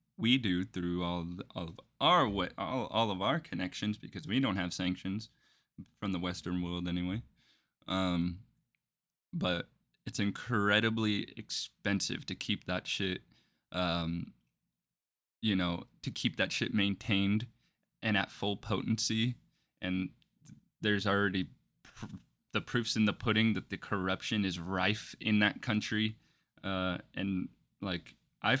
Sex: male